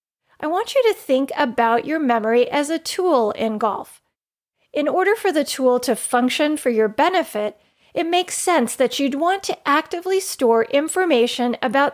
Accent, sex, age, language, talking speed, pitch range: American, female, 30-49, English, 170 wpm, 245-335 Hz